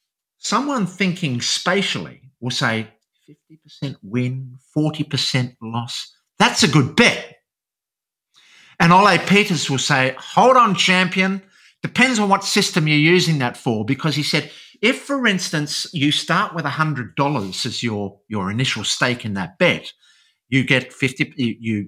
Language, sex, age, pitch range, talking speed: English, male, 50-69, 125-190 Hz, 135 wpm